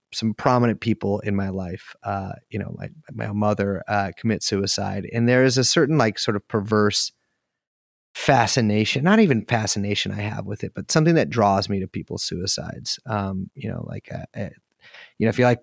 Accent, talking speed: American, 195 wpm